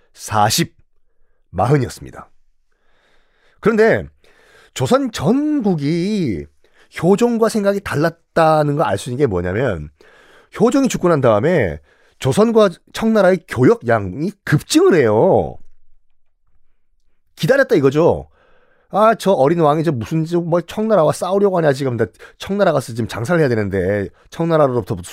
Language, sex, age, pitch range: Korean, male, 40-59, 145-225 Hz